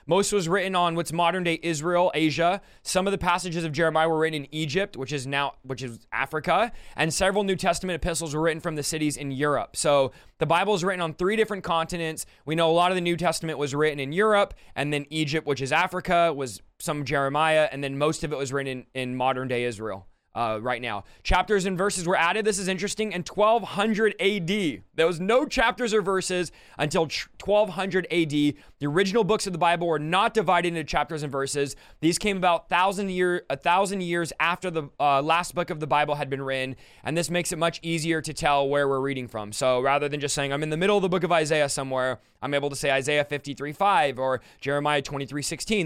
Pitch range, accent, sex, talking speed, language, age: 145-185 Hz, American, male, 225 wpm, English, 20-39